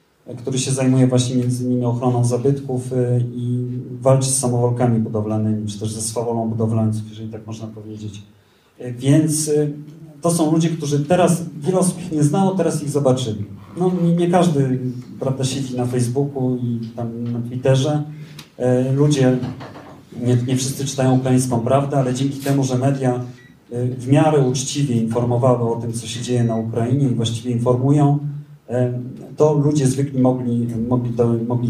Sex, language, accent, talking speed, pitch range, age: male, Polish, native, 155 wpm, 120-140 Hz, 40-59